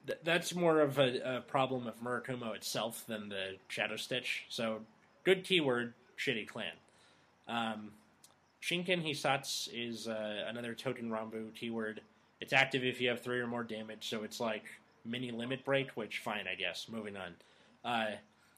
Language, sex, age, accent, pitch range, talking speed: English, male, 20-39, American, 110-135 Hz, 160 wpm